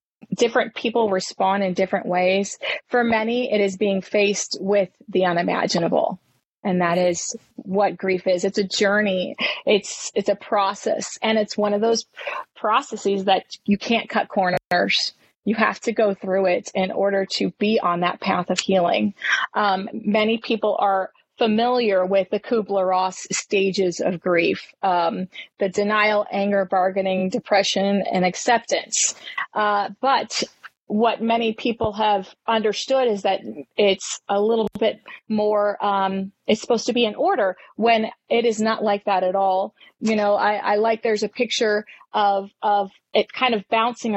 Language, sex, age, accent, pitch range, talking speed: English, female, 30-49, American, 195-225 Hz, 160 wpm